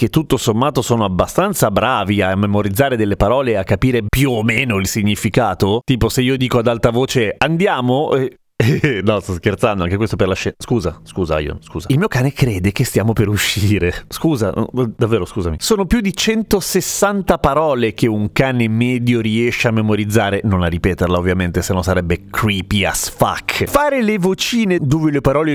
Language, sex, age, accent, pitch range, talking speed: Italian, male, 30-49, native, 100-140 Hz, 185 wpm